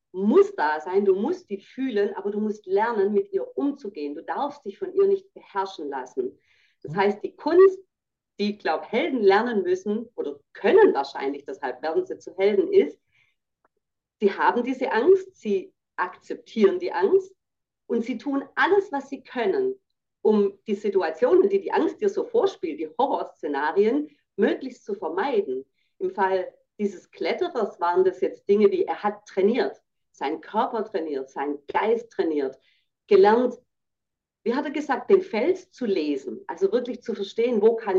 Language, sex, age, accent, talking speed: German, female, 40-59, German, 165 wpm